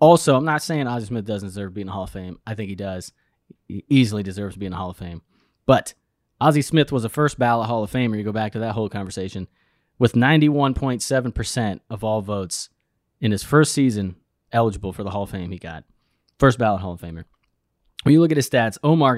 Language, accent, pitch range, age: English, American, 105-135 Hz, 20-39